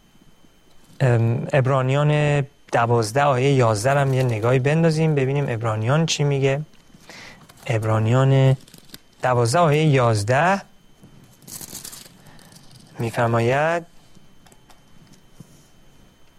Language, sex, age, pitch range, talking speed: Persian, male, 30-49, 120-155 Hz, 60 wpm